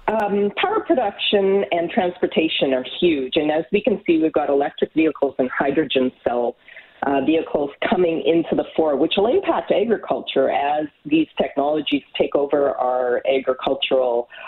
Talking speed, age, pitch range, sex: 150 wpm, 40-59, 145-200 Hz, female